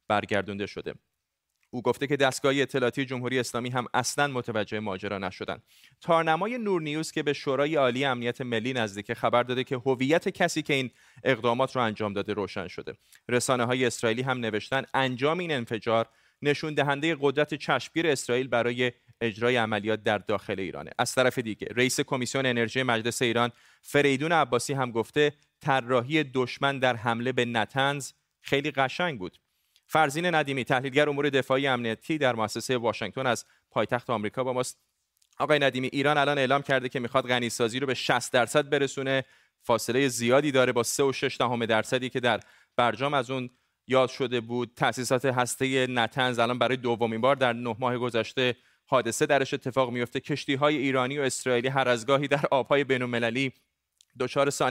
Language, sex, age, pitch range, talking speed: Persian, male, 30-49, 120-140 Hz, 160 wpm